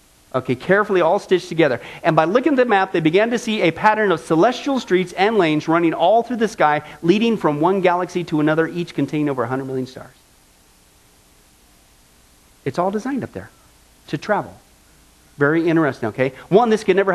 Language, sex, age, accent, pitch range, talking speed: English, male, 40-59, American, 130-200 Hz, 185 wpm